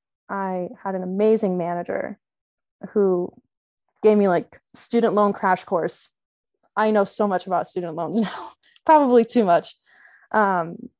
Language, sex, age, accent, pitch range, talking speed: English, female, 20-39, American, 180-220 Hz, 135 wpm